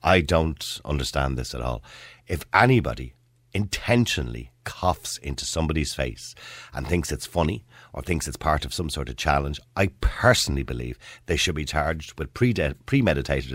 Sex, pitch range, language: male, 75-115 Hz, English